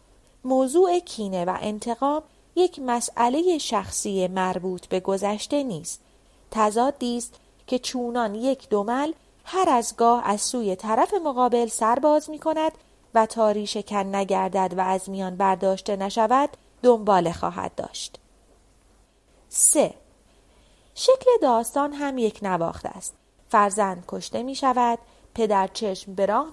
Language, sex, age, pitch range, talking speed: Persian, female, 30-49, 200-270 Hz, 120 wpm